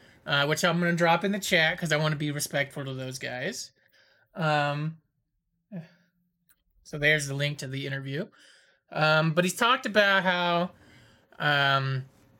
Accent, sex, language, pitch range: American, male, English, 145-190 Hz